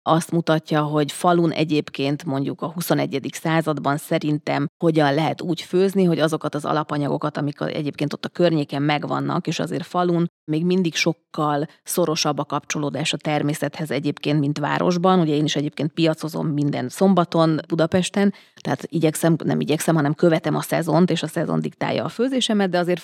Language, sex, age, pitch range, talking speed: Hungarian, female, 30-49, 150-175 Hz, 160 wpm